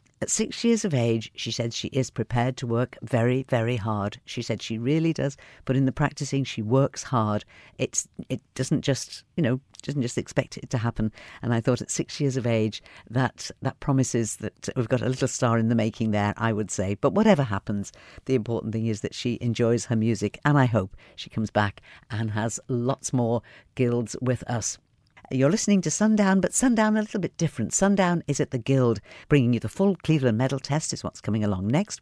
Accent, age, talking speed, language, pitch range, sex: British, 50-69, 215 wpm, English, 110-145 Hz, female